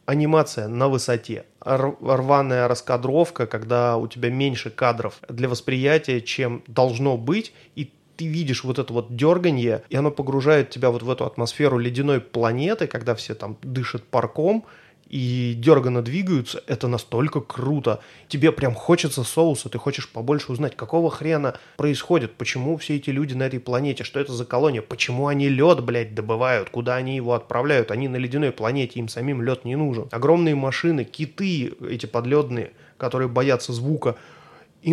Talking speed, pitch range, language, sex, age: 160 wpm, 125-160 Hz, Russian, male, 20-39